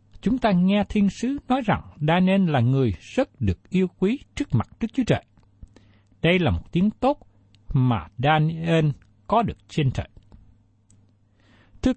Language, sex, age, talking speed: Vietnamese, male, 60-79, 155 wpm